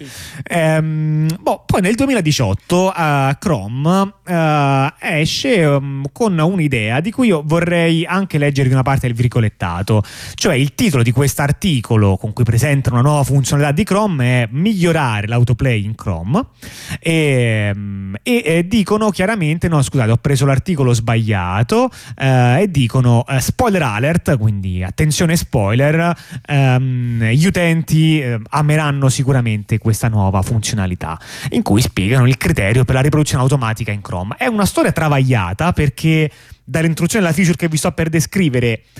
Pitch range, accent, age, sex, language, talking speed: 120-165 Hz, native, 30-49, male, Italian, 145 wpm